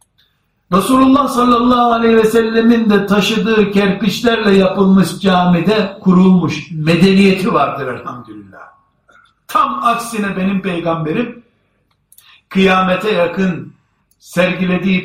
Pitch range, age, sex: 155-220 Hz, 60-79, male